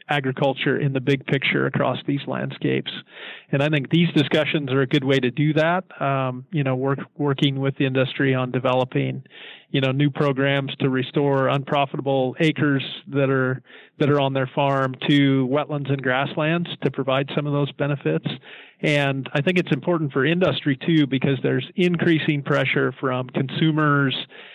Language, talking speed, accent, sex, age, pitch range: English, 170 wpm, American, male, 40-59, 135-150 Hz